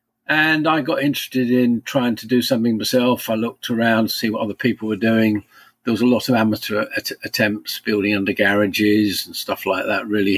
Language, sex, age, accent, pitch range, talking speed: English, male, 50-69, British, 110-130 Hz, 210 wpm